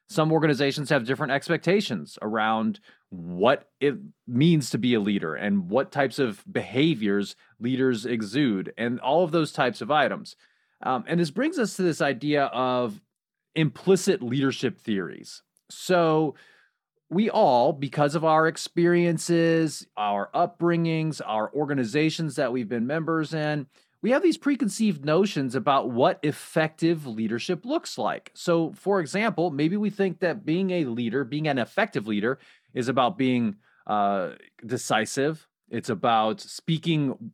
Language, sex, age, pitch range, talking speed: English, male, 30-49, 130-180 Hz, 140 wpm